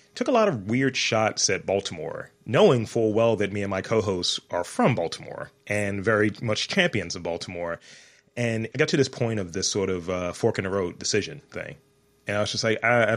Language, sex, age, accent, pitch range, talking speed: English, male, 30-49, American, 95-115 Hz, 225 wpm